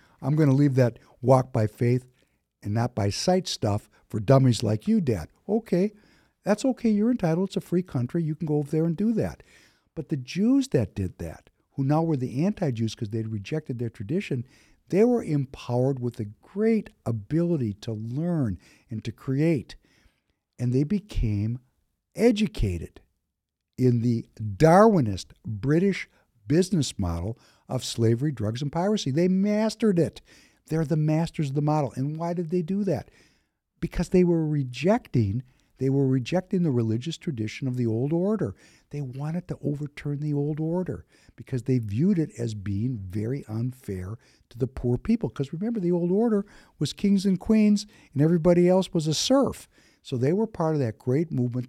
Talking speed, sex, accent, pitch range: 175 wpm, male, American, 115-175 Hz